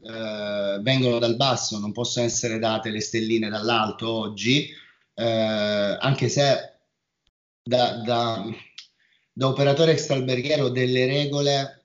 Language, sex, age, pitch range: Italian, male, 30-49, 110-135 Hz